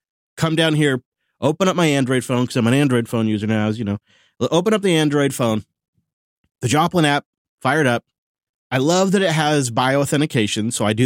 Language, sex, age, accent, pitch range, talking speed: English, male, 30-49, American, 115-170 Hz, 200 wpm